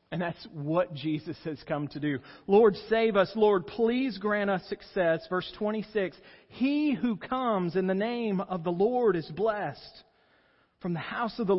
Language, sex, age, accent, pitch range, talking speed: English, male, 40-59, American, 150-205 Hz, 175 wpm